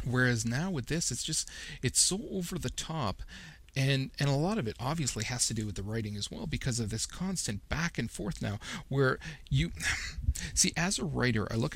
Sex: male